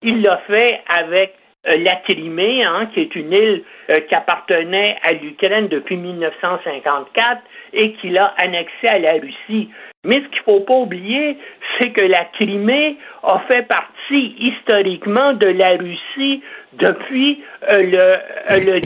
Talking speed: 145 wpm